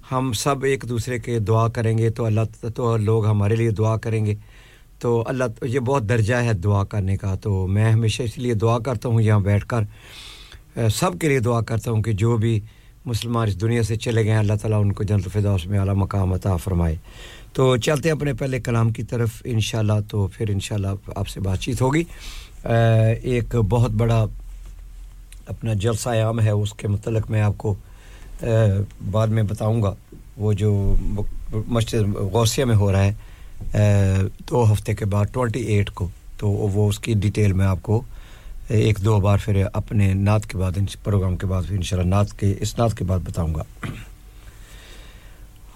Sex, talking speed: male, 155 wpm